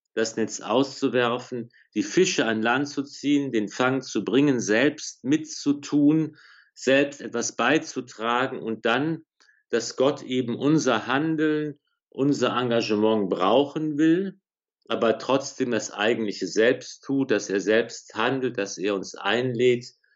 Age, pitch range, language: 50-69, 110-140 Hz, German